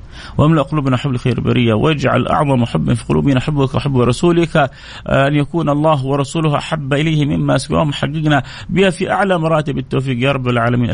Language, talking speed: Arabic, 165 wpm